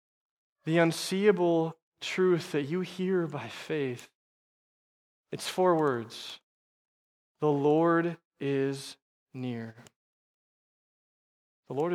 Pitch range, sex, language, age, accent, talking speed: 135-165 Hz, male, English, 20-39, American, 85 wpm